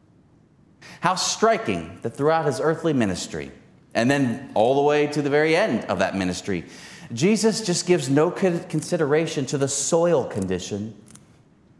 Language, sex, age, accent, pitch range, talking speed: English, male, 30-49, American, 120-165 Hz, 140 wpm